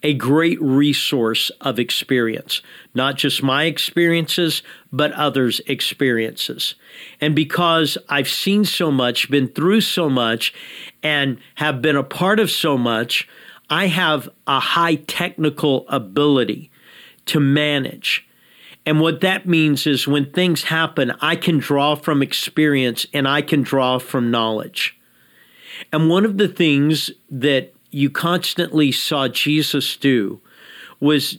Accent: American